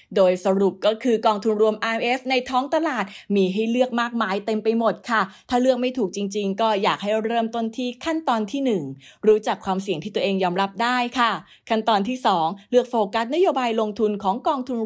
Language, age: English, 20-39